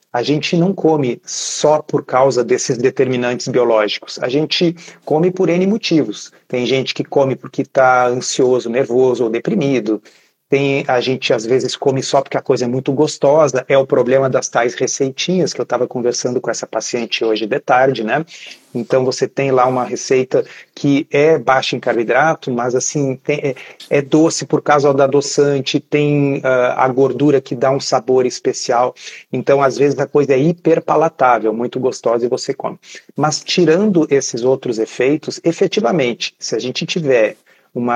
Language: Portuguese